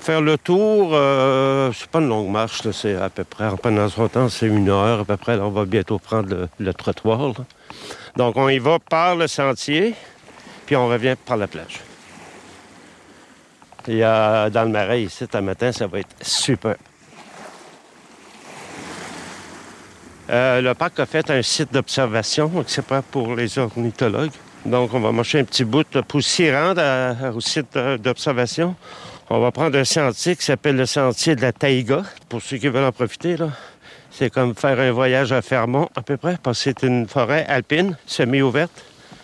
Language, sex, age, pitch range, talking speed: French, male, 60-79, 120-150 Hz, 185 wpm